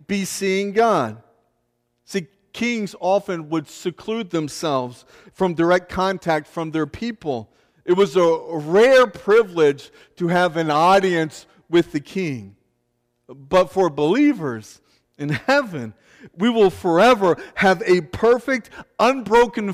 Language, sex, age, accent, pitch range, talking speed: English, male, 50-69, American, 145-210 Hz, 120 wpm